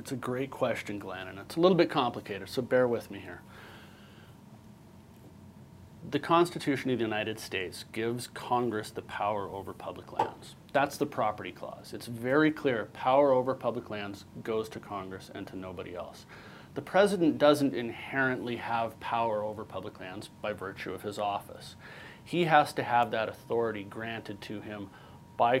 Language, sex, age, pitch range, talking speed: English, male, 30-49, 100-135 Hz, 165 wpm